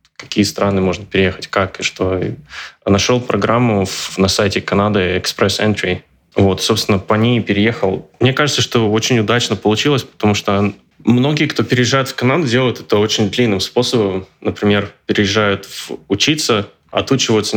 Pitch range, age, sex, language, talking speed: 100-115 Hz, 20-39, male, Russian, 135 wpm